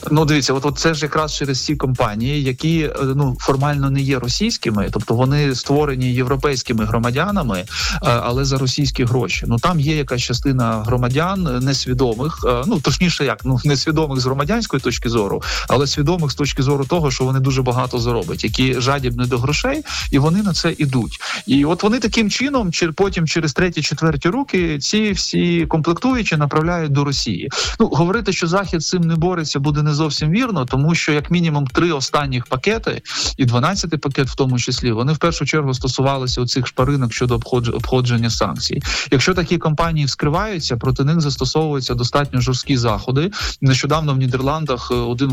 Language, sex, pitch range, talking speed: Ukrainian, male, 125-160 Hz, 165 wpm